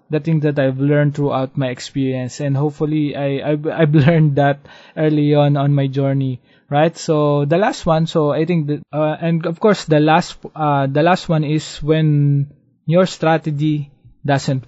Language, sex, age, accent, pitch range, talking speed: English, male, 20-39, Filipino, 135-150 Hz, 180 wpm